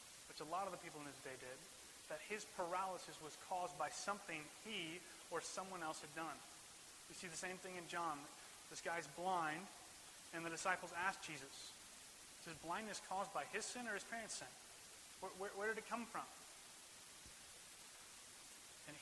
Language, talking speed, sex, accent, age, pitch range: English, 180 wpm, male, American, 30-49, 155-195 Hz